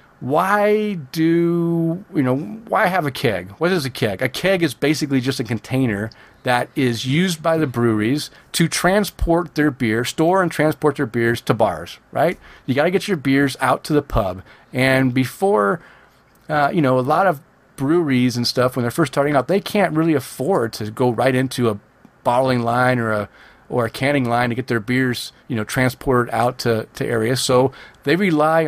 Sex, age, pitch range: male, 40-59, 120-155 Hz